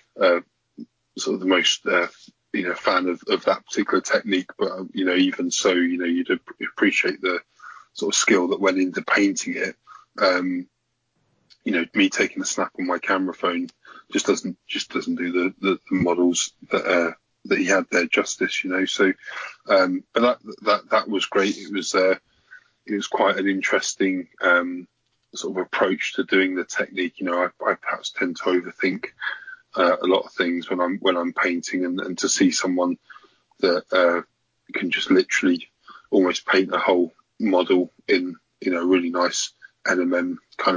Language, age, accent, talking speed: English, 20-39, British, 185 wpm